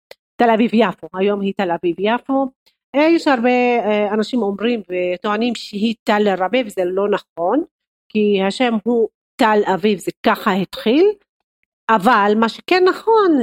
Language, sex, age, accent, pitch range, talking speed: Hebrew, female, 40-59, native, 185-235 Hz, 140 wpm